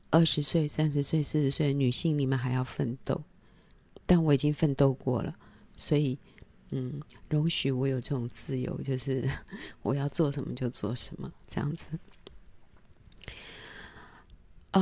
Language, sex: Chinese, female